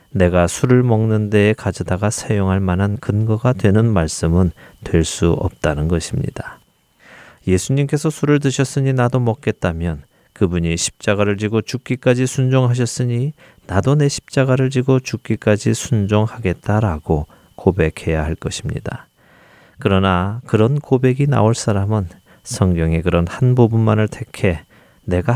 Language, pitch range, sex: Korean, 90-125 Hz, male